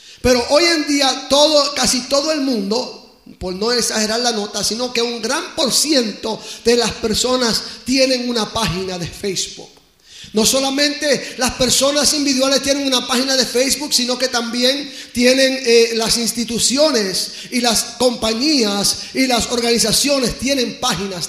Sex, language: male, Spanish